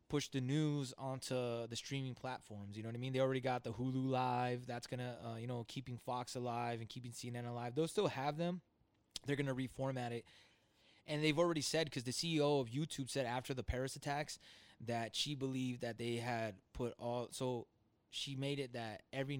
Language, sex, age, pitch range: English, male, 20-39, 115-150 Hz